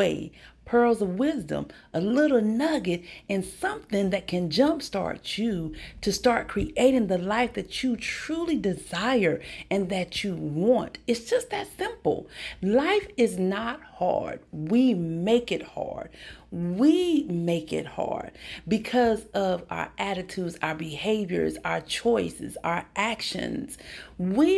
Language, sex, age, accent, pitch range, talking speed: English, female, 50-69, American, 175-255 Hz, 130 wpm